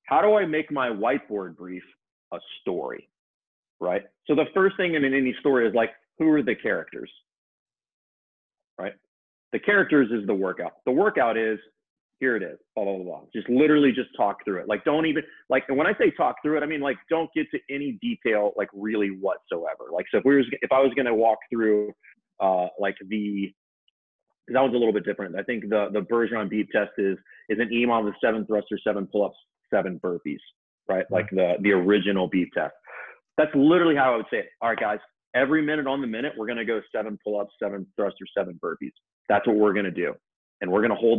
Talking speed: 215 wpm